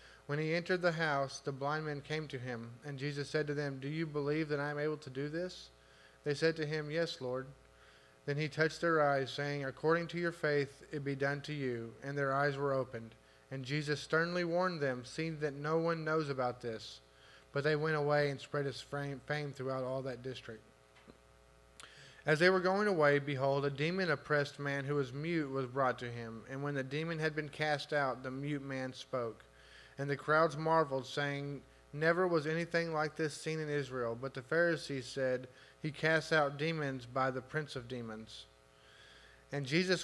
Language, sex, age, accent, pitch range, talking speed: English, male, 30-49, American, 130-155 Hz, 200 wpm